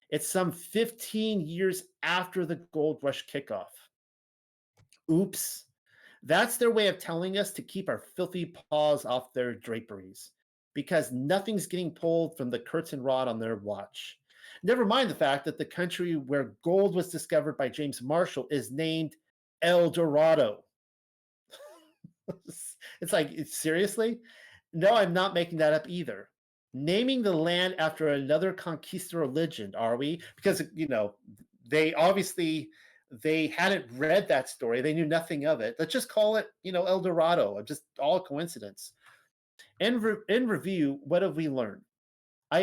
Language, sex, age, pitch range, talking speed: English, male, 40-59, 140-185 Hz, 150 wpm